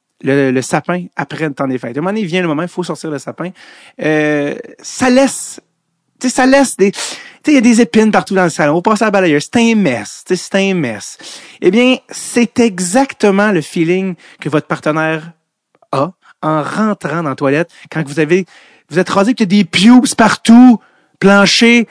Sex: male